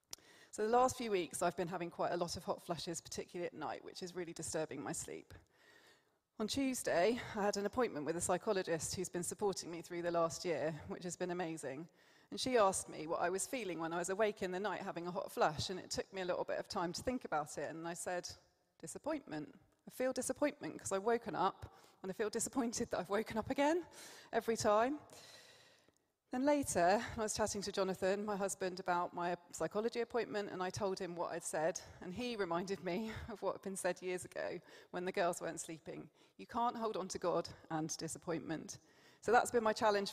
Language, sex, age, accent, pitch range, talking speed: English, female, 30-49, British, 175-220 Hz, 220 wpm